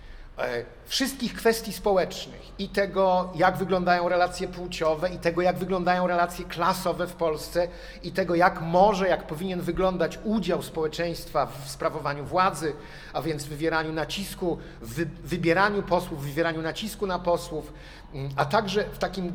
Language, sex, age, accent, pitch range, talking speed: Polish, male, 50-69, native, 160-195 Hz, 145 wpm